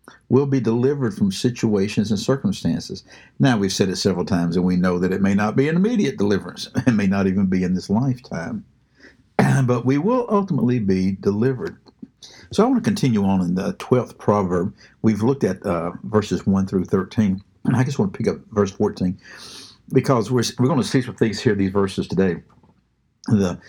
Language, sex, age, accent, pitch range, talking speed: English, male, 60-79, American, 95-130 Hz, 200 wpm